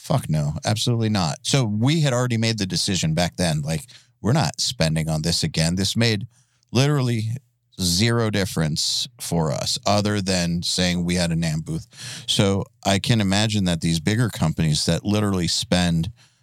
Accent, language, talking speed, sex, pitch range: American, English, 170 wpm, male, 90-120 Hz